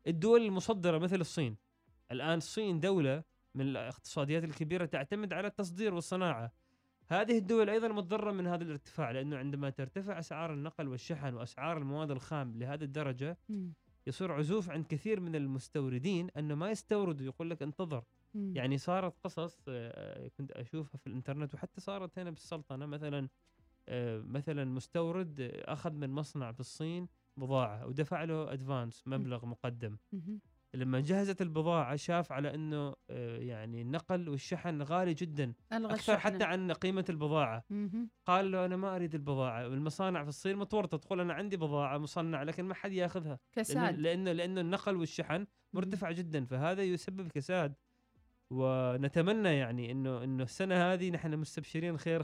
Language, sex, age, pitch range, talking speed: Arabic, male, 20-39, 140-185 Hz, 140 wpm